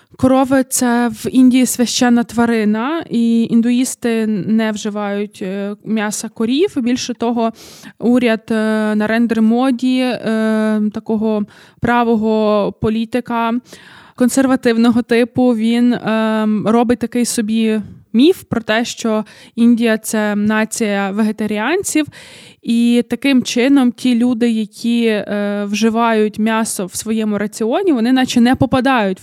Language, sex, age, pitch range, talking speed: Ukrainian, female, 20-39, 215-240 Hz, 105 wpm